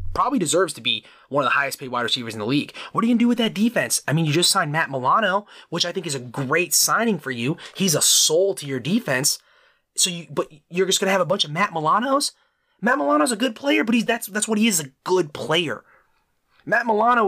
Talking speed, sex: 255 wpm, male